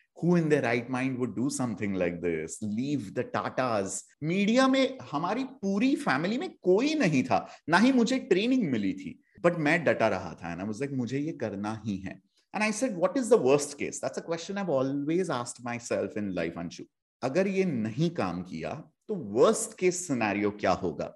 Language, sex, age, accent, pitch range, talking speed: English, male, 30-49, Indian, 120-185 Hz, 200 wpm